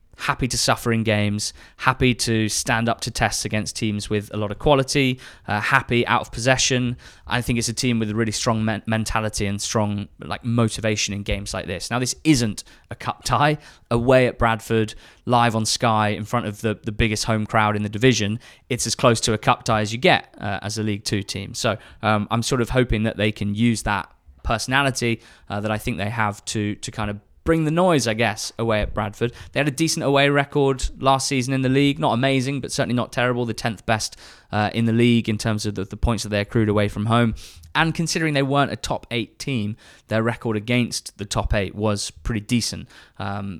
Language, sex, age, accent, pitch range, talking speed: English, male, 20-39, British, 105-125 Hz, 225 wpm